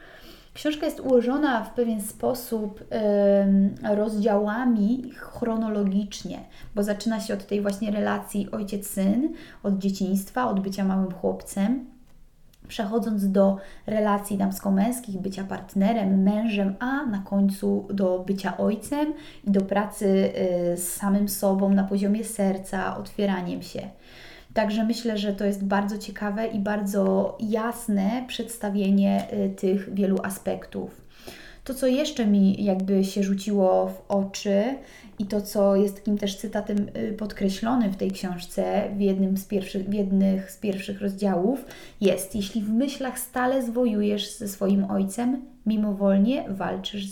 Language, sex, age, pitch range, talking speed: Polish, female, 20-39, 195-225 Hz, 125 wpm